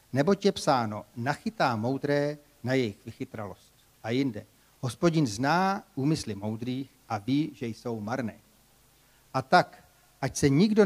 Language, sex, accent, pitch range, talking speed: Czech, male, native, 115-145 Hz, 135 wpm